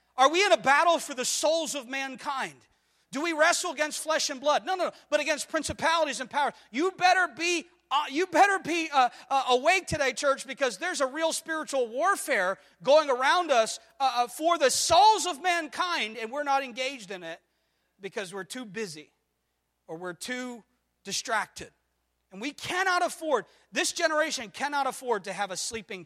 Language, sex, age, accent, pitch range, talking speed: English, male, 40-59, American, 205-315 Hz, 170 wpm